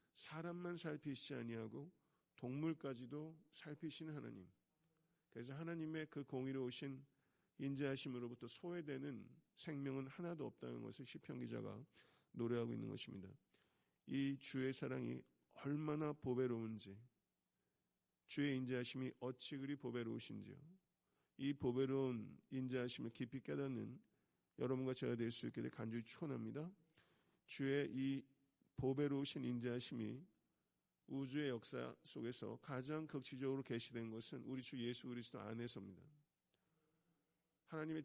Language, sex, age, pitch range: Korean, male, 50-69, 120-145 Hz